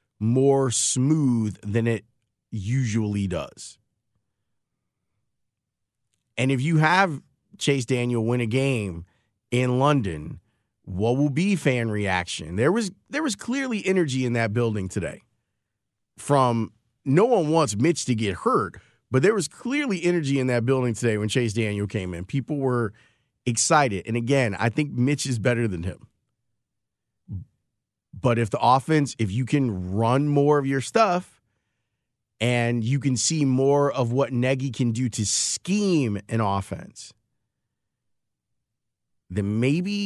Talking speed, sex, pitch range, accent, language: 140 wpm, male, 110-145 Hz, American, English